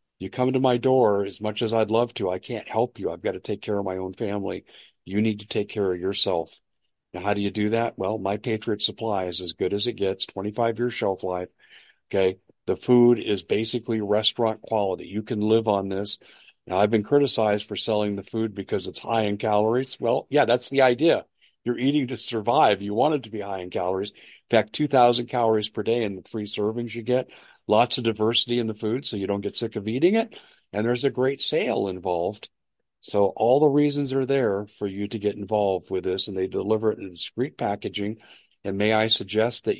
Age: 50-69